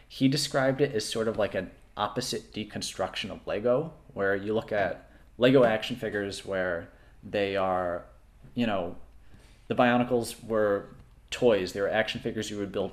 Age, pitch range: 30-49, 100-120 Hz